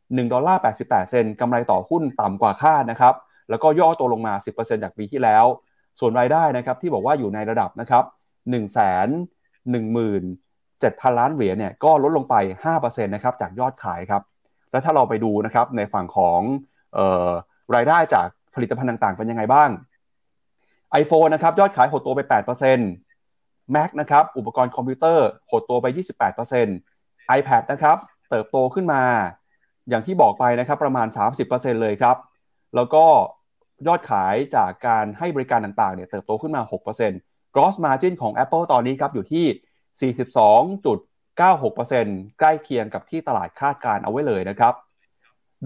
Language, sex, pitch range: Thai, male, 110-155 Hz